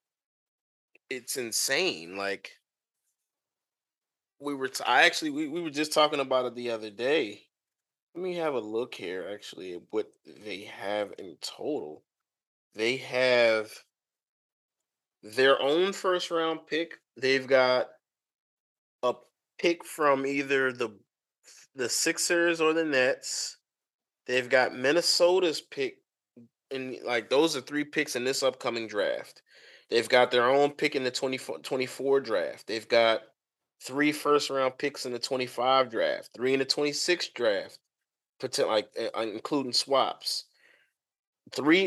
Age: 20-39